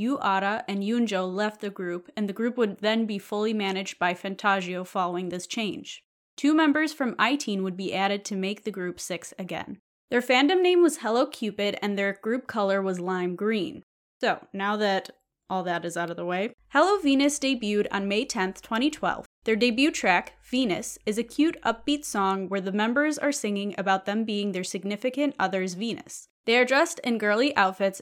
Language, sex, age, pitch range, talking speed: English, female, 20-39, 195-250 Hz, 195 wpm